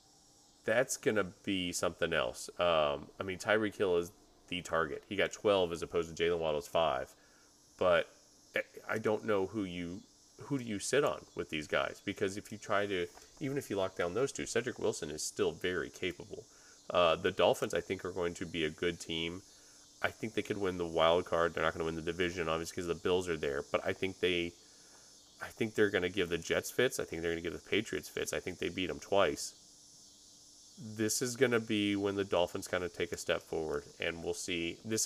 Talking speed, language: 235 wpm, English